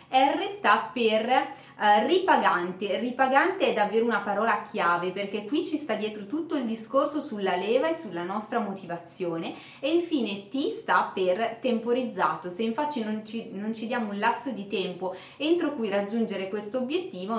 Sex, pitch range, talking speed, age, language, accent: female, 195-255 Hz, 155 wpm, 20-39, Italian, native